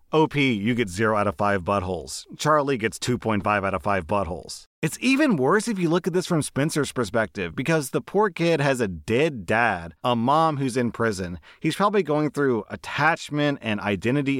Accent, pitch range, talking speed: American, 100-140 Hz, 190 wpm